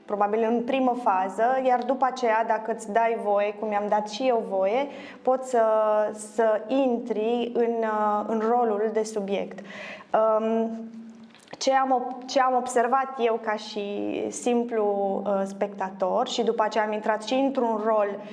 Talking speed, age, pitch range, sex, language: 145 wpm, 20-39, 210-255 Hz, female, Romanian